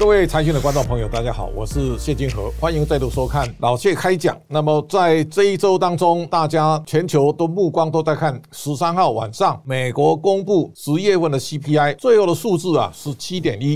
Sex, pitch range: male, 130-165 Hz